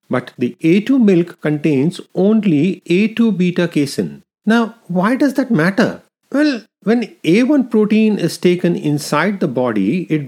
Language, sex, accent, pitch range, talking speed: English, male, Indian, 150-195 Hz, 135 wpm